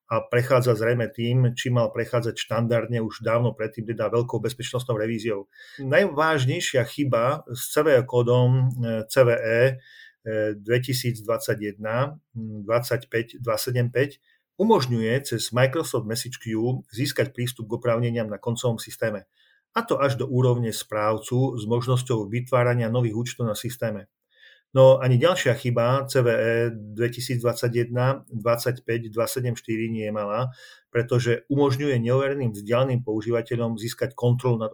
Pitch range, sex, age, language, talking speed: 115-130 Hz, male, 40-59, Slovak, 110 wpm